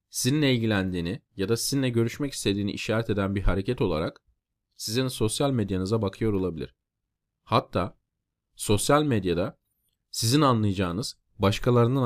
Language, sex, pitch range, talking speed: Turkish, male, 95-125 Hz, 115 wpm